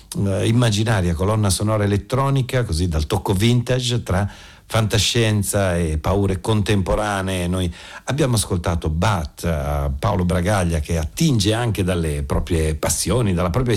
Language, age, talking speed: Italian, 60-79, 125 wpm